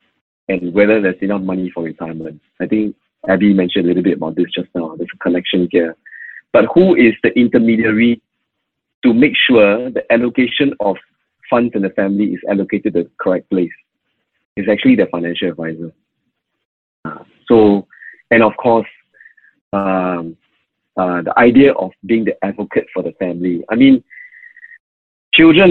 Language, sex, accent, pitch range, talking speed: English, male, Malaysian, 90-120 Hz, 150 wpm